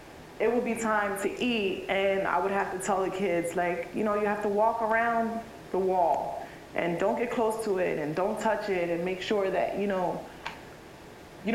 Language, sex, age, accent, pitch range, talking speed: English, female, 20-39, American, 175-215 Hz, 215 wpm